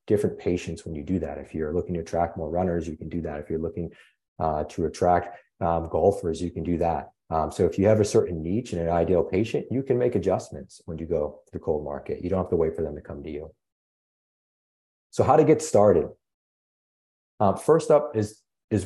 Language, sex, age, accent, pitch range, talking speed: English, male, 30-49, American, 85-110 Hz, 230 wpm